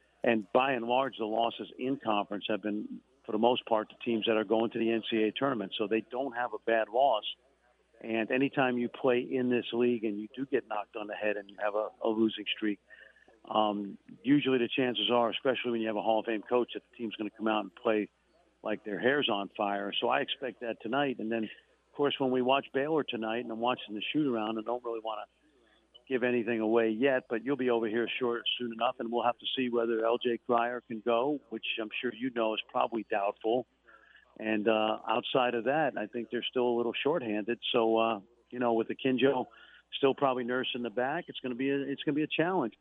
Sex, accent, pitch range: male, American, 110-125 Hz